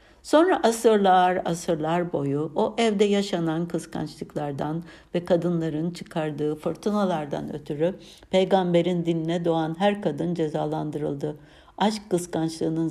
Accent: native